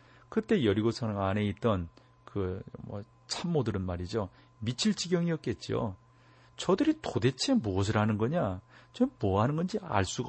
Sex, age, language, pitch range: male, 40-59, Korean, 105-130 Hz